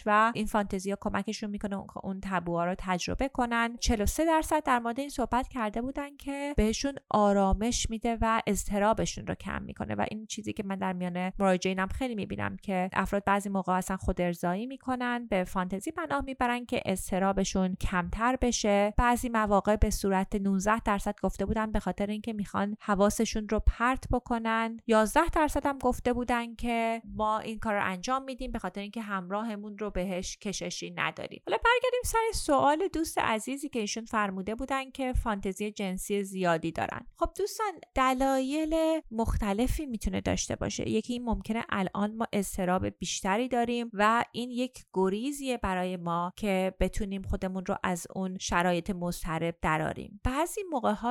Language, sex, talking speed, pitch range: Persian, female, 160 wpm, 190-245 Hz